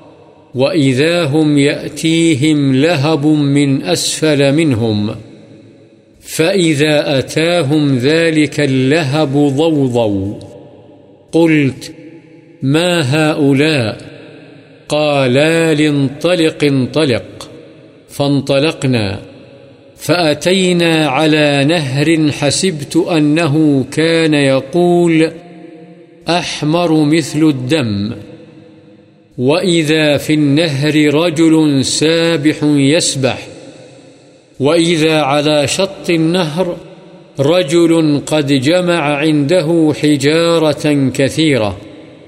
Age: 50-69